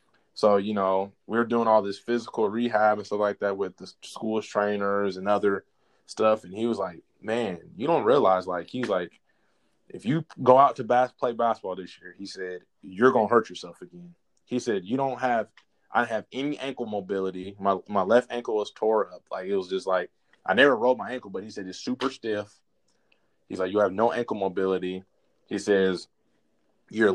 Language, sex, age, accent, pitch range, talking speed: English, male, 20-39, American, 95-120 Hz, 205 wpm